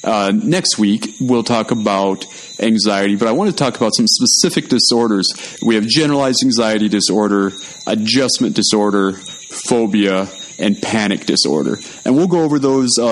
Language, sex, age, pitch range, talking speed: English, male, 30-49, 110-160 Hz, 145 wpm